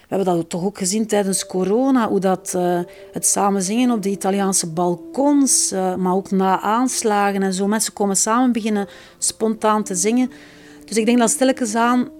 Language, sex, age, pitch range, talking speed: Dutch, female, 40-59, 185-255 Hz, 185 wpm